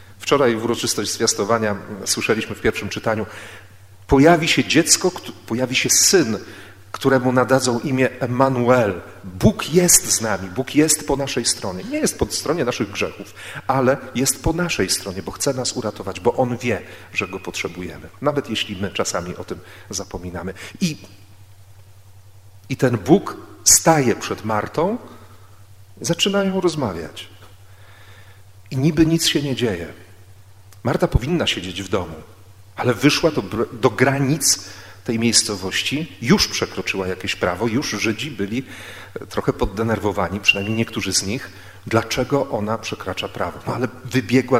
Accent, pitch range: native, 100-125 Hz